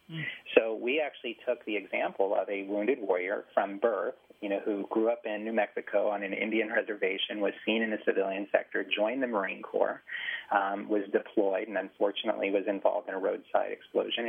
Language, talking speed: English, 190 wpm